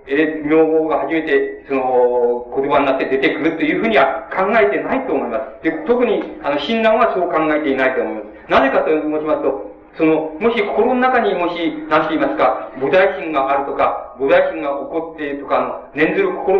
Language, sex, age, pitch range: Japanese, male, 40-59, 145-235 Hz